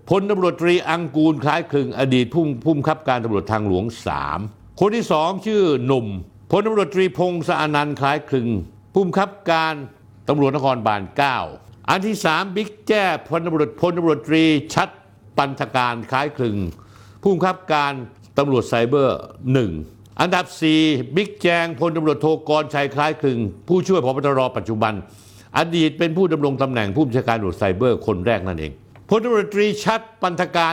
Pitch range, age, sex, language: 110-170 Hz, 60-79, male, Thai